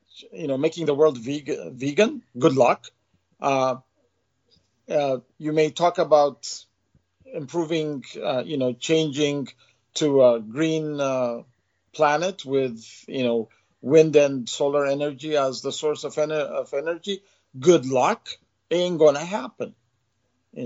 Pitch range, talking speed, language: 125-160 Hz, 130 wpm, English